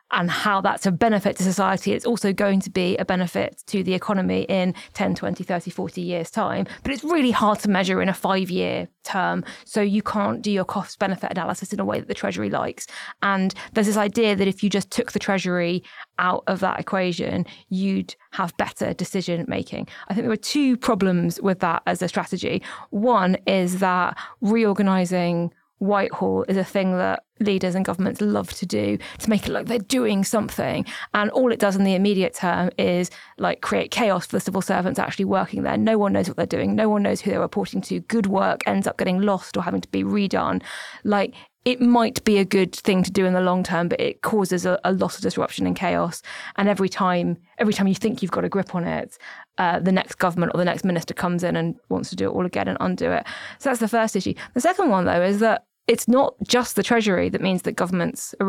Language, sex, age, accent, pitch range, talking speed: English, female, 20-39, British, 180-210 Hz, 225 wpm